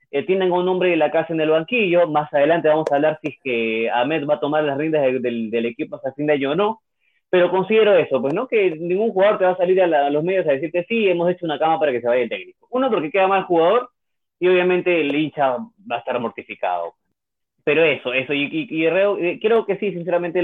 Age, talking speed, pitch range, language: 30-49, 255 wpm, 130-175 Hz, Spanish